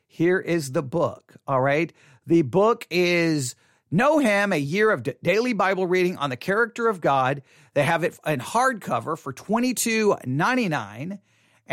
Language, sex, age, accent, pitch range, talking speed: English, male, 40-59, American, 160-225 Hz, 155 wpm